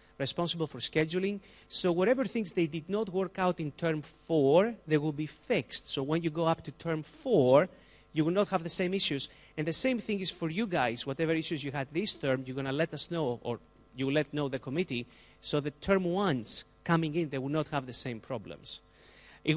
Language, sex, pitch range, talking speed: English, male, 140-175 Hz, 220 wpm